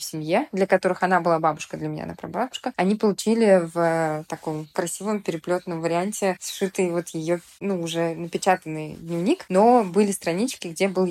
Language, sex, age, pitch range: Russian, female, 20-39, 170-205 Hz